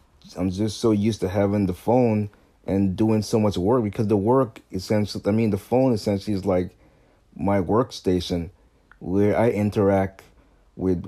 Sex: male